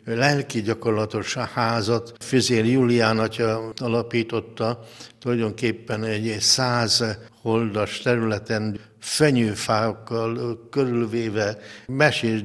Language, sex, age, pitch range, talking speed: Hungarian, male, 60-79, 110-120 Hz, 70 wpm